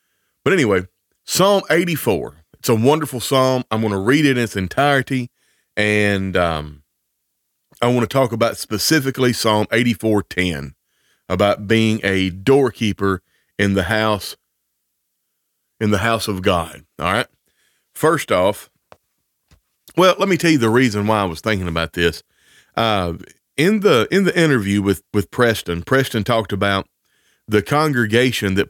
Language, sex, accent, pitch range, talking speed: English, male, American, 95-130 Hz, 155 wpm